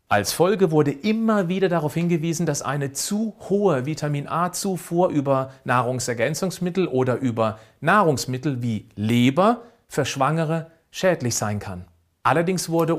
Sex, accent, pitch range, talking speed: male, German, 130-180 Hz, 125 wpm